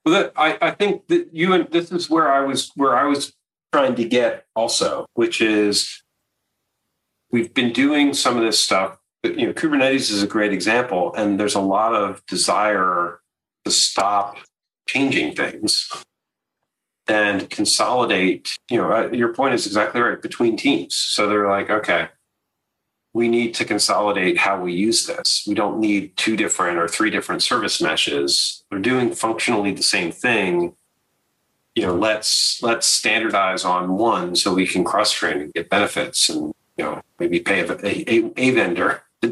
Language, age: English, 40-59